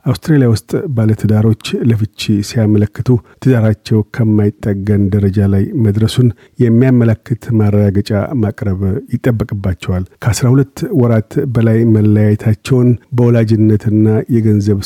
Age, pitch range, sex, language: 50-69, 105-120 Hz, male, Amharic